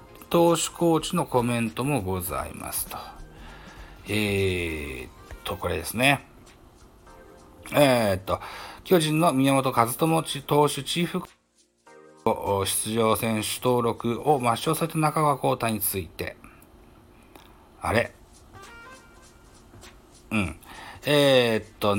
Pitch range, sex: 95-125 Hz, male